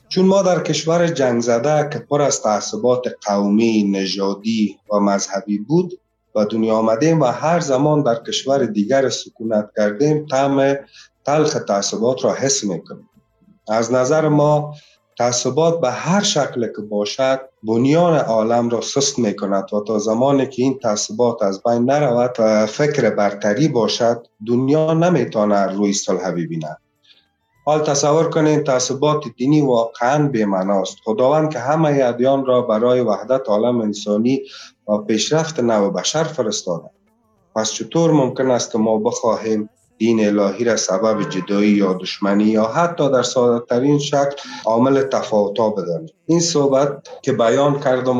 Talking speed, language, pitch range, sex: 145 wpm, Persian, 105-145 Hz, male